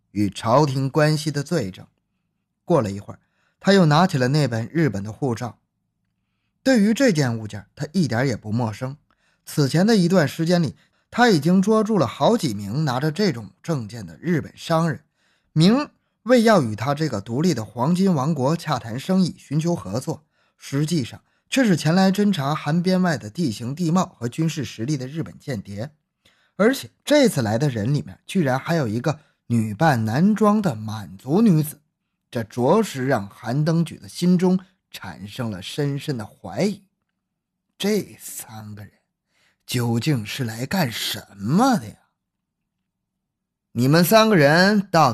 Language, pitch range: Chinese, 120-180 Hz